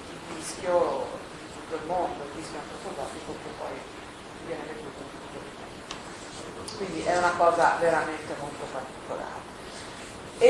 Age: 40-59